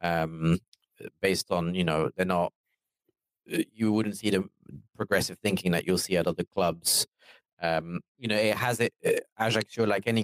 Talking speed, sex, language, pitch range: 170 wpm, male, English, 90-110 Hz